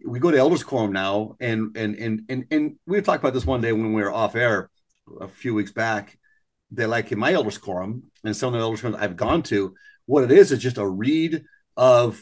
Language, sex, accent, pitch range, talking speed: English, male, American, 110-160 Hz, 240 wpm